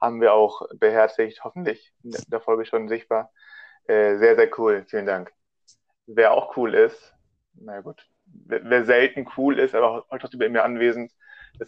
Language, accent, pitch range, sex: German, German, 110-135 Hz, male